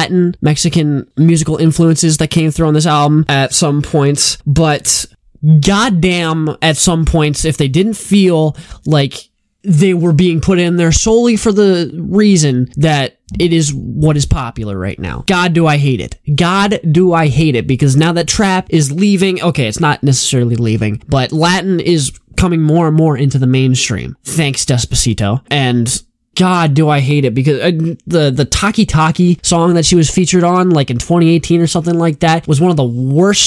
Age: 10-29